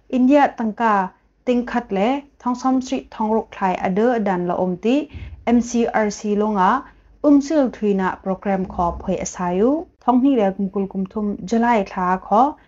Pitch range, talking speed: 185-235 Hz, 135 wpm